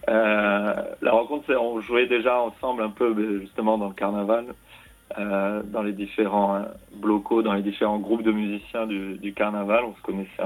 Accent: French